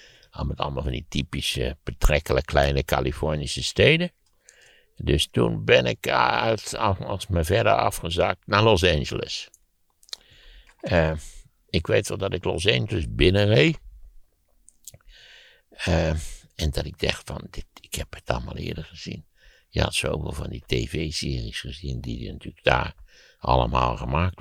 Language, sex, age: Dutch, male, 60-79